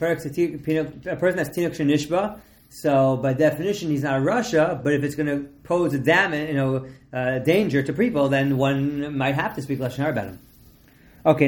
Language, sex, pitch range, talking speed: English, male, 135-160 Hz, 185 wpm